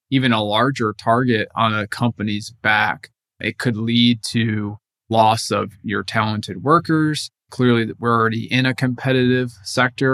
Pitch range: 105-125 Hz